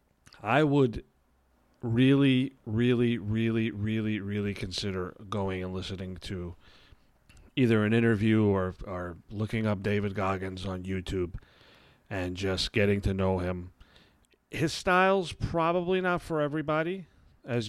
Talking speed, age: 120 wpm, 40-59